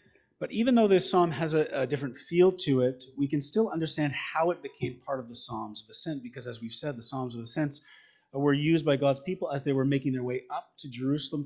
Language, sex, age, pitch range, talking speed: English, male, 30-49, 130-155 Hz, 245 wpm